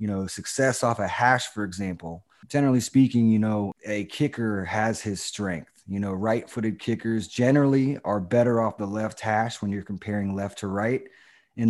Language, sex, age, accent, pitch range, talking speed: English, male, 20-39, American, 105-130 Hz, 180 wpm